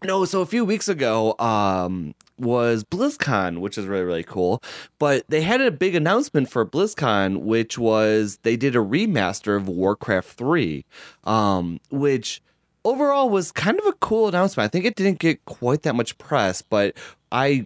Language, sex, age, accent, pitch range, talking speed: English, male, 20-39, American, 95-145 Hz, 175 wpm